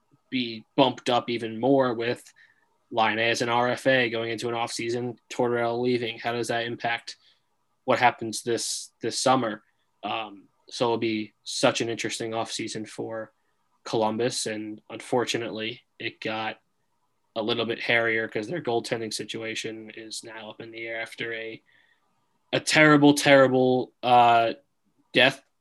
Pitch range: 115-125 Hz